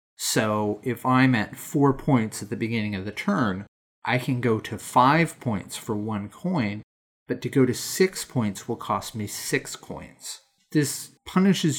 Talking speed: 175 wpm